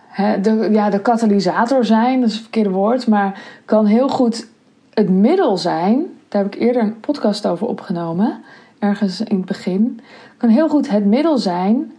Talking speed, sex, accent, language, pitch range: 170 wpm, female, Dutch, Dutch, 195-245 Hz